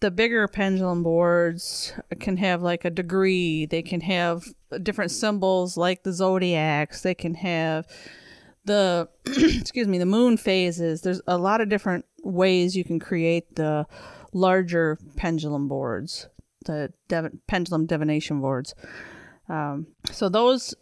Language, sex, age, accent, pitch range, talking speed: English, female, 30-49, American, 160-185 Hz, 135 wpm